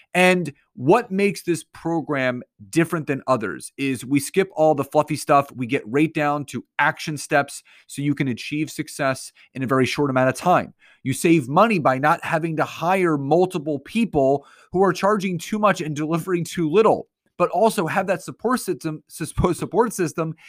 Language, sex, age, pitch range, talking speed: English, male, 30-49, 145-190 Hz, 180 wpm